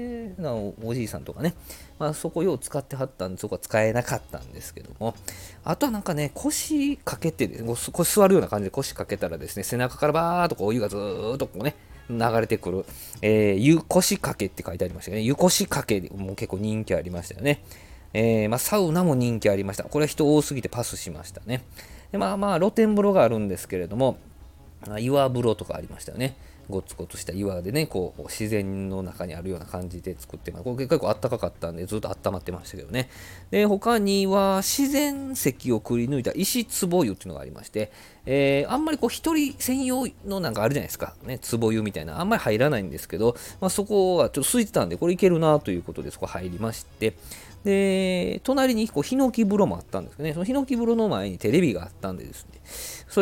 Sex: male